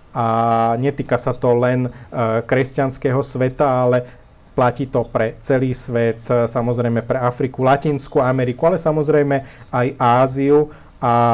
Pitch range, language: 120-135 Hz, Slovak